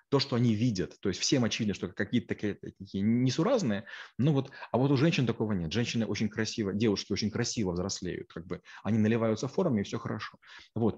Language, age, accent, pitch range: Russian, 20-39, native, 100-120 Hz